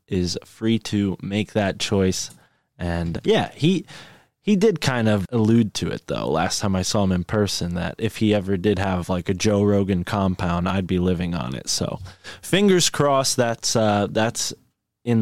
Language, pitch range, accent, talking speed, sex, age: English, 95-115 Hz, American, 185 wpm, male, 20-39